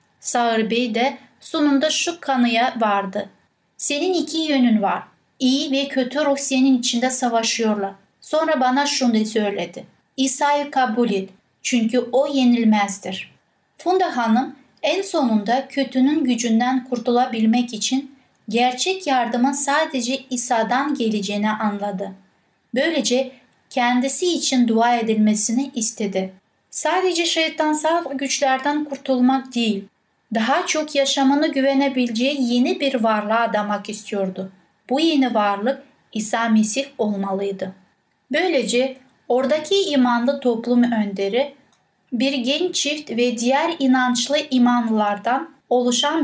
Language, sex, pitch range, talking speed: Turkish, female, 225-275 Hz, 105 wpm